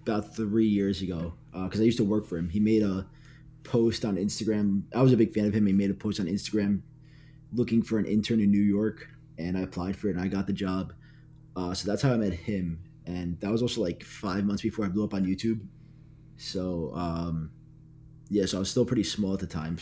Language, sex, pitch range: English, male, 95-115 Hz